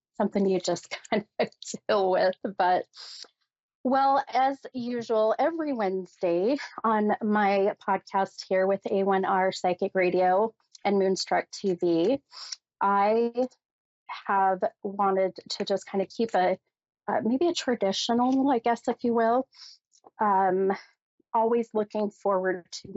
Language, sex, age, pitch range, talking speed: English, female, 30-49, 185-235 Hz, 125 wpm